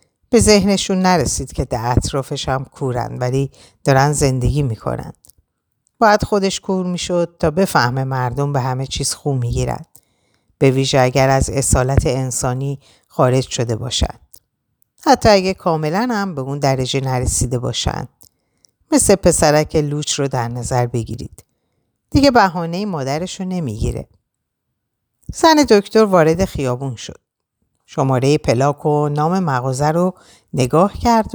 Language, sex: Persian, female